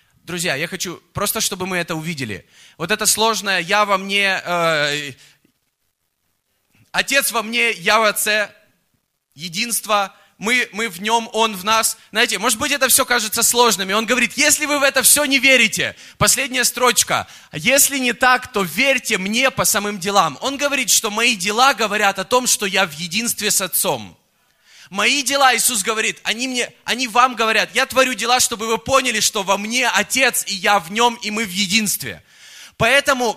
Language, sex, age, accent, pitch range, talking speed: Russian, male, 20-39, native, 195-245 Hz, 175 wpm